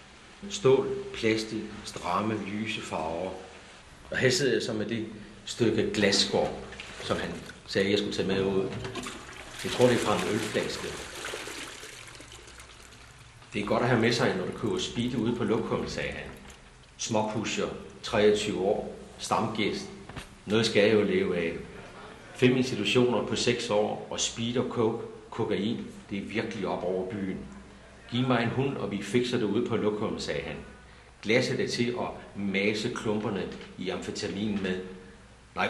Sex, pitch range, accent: male, 100-125 Hz, native